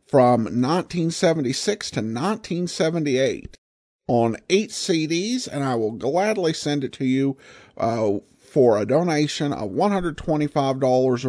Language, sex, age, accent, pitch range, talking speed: English, male, 50-69, American, 125-185 Hz, 110 wpm